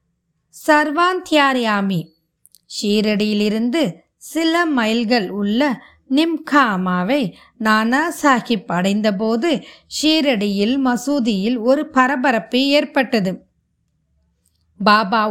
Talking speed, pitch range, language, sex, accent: 65 wpm, 200-265 Hz, Tamil, female, native